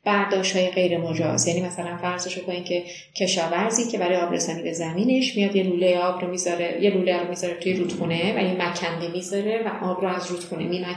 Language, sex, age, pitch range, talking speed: Persian, female, 30-49, 175-190 Hz, 195 wpm